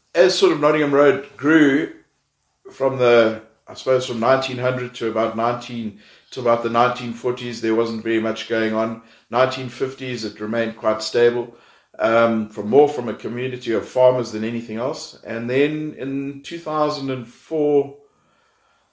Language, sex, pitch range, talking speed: English, male, 115-135 Hz, 145 wpm